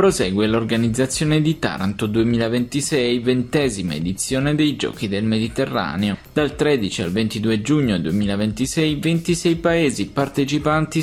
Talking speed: 110 wpm